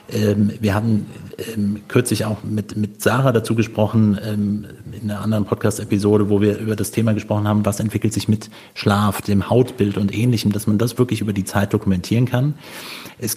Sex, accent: male, German